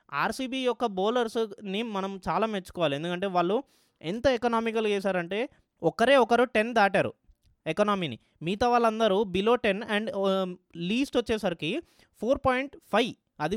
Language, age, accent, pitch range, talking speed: Telugu, 20-39, native, 175-225 Hz, 120 wpm